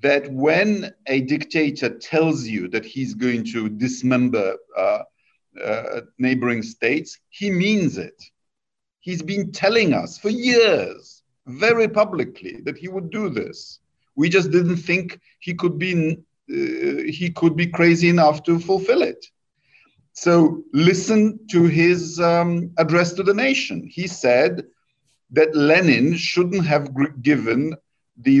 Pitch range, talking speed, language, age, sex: 150-195 Hz, 135 wpm, English, 50-69, male